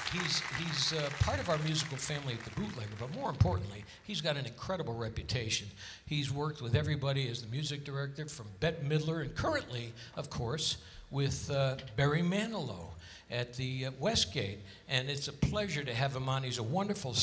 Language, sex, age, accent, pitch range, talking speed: English, male, 60-79, American, 125-170 Hz, 185 wpm